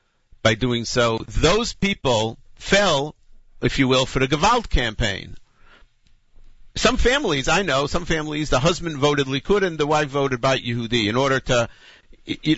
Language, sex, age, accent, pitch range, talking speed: English, male, 50-69, American, 110-155 Hz, 160 wpm